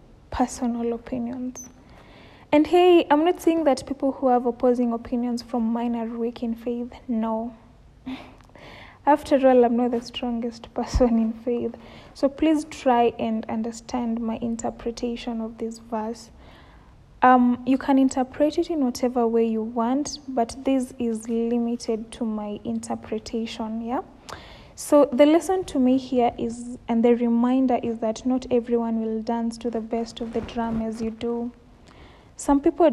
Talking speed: 150 wpm